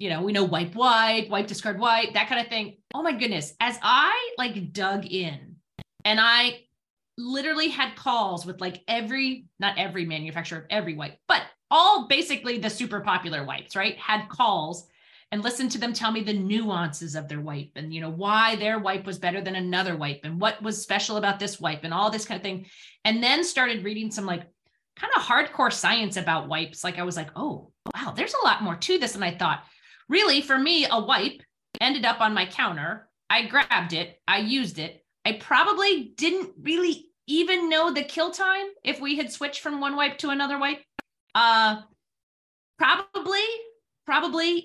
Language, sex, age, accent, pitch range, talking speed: English, female, 30-49, American, 185-275 Hz, 195 wpm